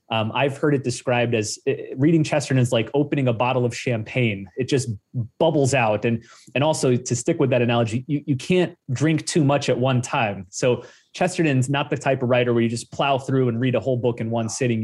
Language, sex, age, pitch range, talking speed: English, male, 30-49, 115-145 Hz, 230 wpm